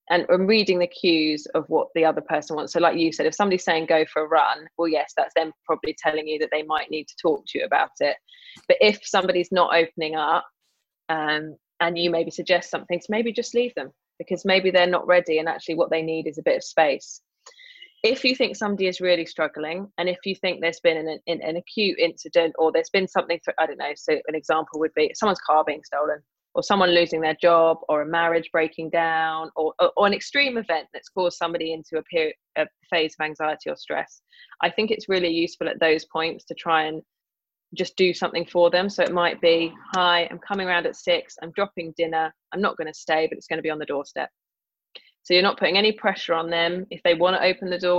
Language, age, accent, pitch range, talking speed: English, 20-39, British, 160-185 Hz, 240 wpm